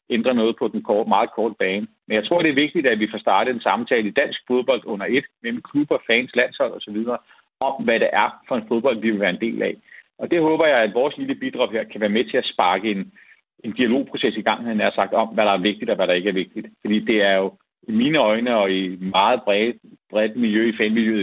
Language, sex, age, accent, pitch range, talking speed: Danish, male, 40-59, native, 110-165 Hz, 265 wpm